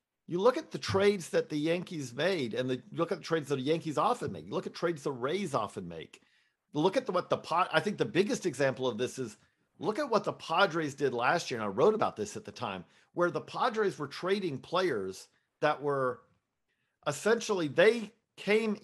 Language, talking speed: English, 225 wpm